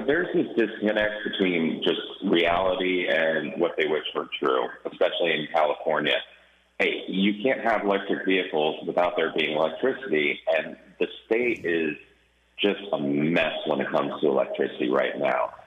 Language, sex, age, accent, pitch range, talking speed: English, male, 30-49, American, 85-105 Hz, 150 wpm